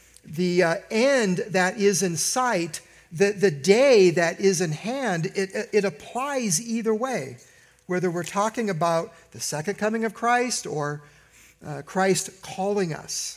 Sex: male